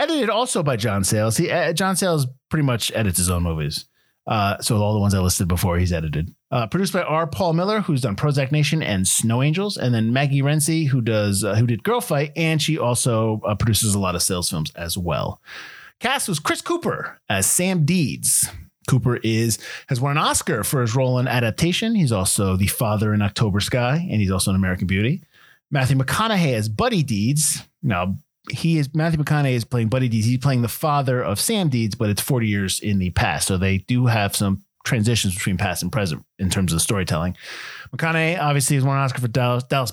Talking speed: 215 wpm